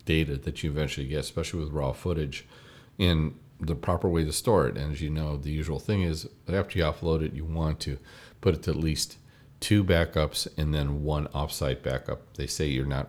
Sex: male